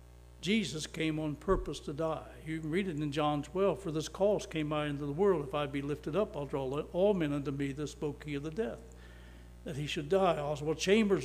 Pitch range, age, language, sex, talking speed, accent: 135-185 Hz, 60-79, English, male, 240 wpm, American